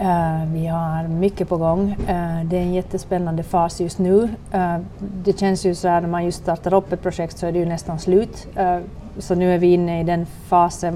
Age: 30-49